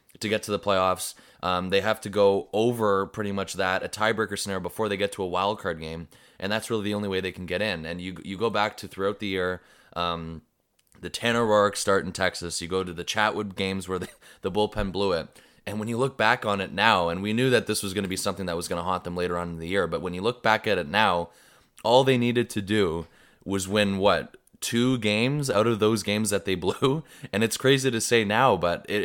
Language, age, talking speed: English, 20-39, 260 wpm